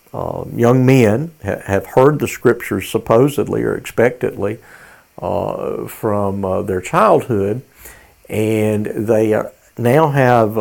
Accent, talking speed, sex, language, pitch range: American, 120 wpm, male, English, 105-130 Hz